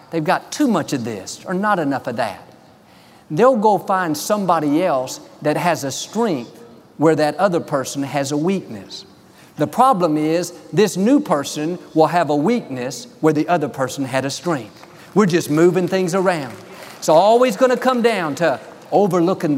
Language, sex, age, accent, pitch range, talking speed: English, male, 50-69, American, 140-195 Hz, 175 wpm